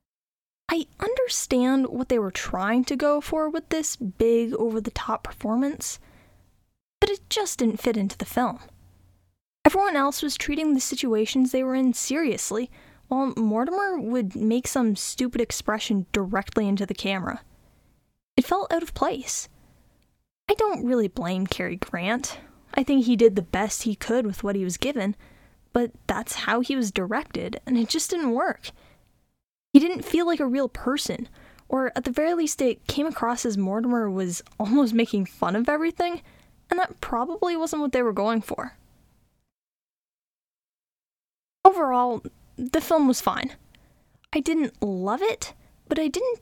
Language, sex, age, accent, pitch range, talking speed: English, female, 10-29, American, 225-310 Hz, 160 wpm